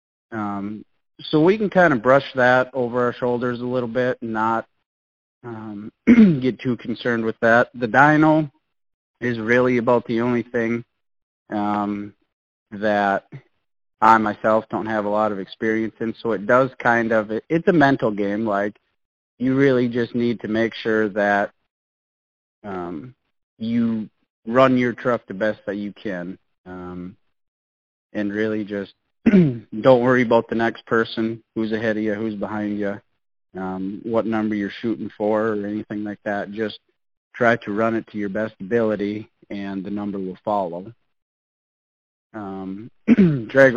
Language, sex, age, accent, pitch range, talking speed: English, male, 30-49, American, 100-120 Hz, 155 wpm